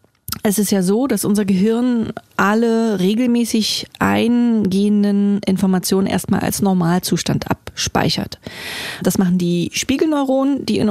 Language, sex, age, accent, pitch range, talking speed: German, female, 30-49, German, 185-220 Hz, 115 wpm